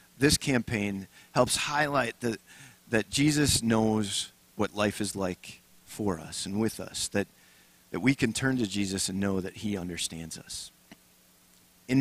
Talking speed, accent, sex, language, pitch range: 155 wpm, American, male, English, 95-130 Hz